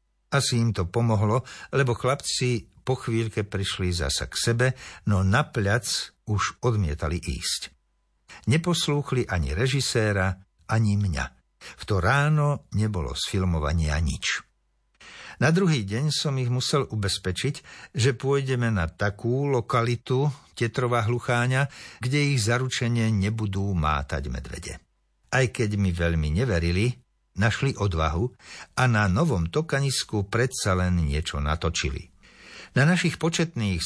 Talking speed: 115 wpm